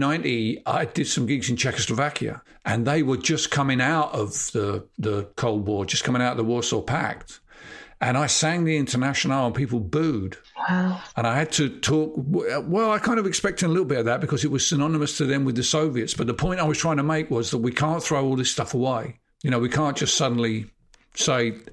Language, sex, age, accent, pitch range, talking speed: English, male, 50-69, British, 115-150 Hz, 220 wpm